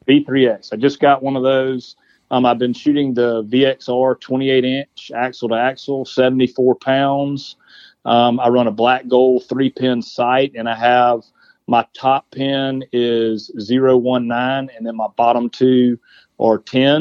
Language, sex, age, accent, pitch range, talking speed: English, male, 40-59, American, 115-130 Hz, 140 wpm